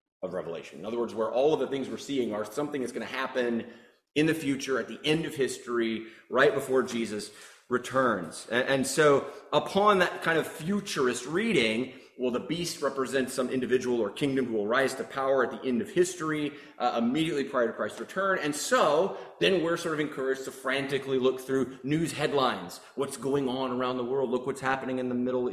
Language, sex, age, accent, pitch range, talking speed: English, male, 30-49, American, 125-165 Hz, 205 wpm